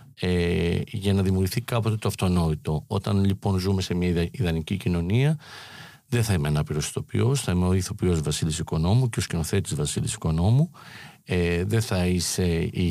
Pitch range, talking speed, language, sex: 90-115 Hz, 150 wpm, Greek, male